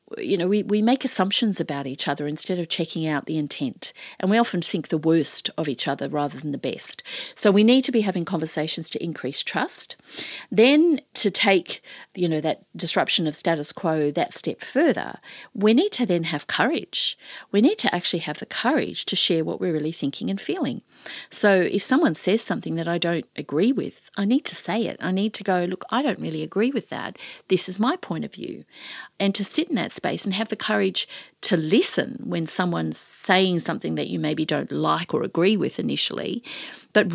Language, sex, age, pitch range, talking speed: English, female, 50-69, 160-220 Hz, 210 wpm